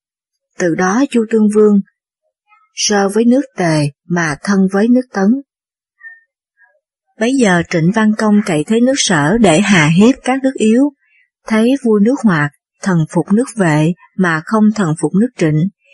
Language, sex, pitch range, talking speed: Vietnamese, female, 180-235 Hz, 160 wpm